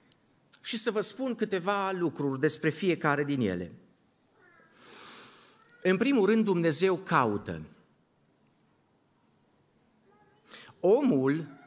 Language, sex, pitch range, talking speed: Romanian, male, 155-200 Hz, 80 wpm